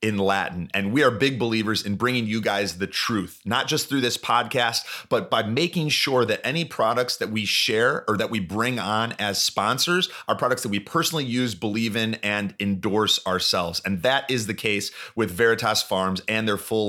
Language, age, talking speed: English, 30-49, 205 wpm